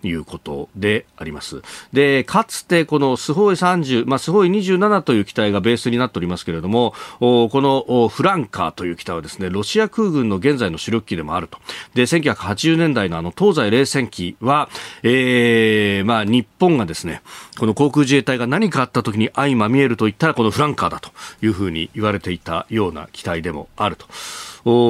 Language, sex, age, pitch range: Japanese, male, 40-59, 100-150 Hz